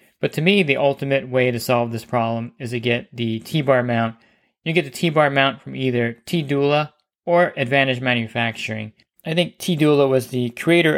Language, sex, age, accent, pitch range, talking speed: English, male, 20-39, American, 120-140 Hz, 180 wpm